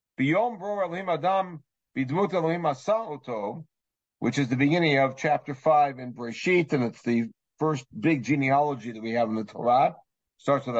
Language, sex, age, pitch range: English, male, 60-79, 140-175 Hz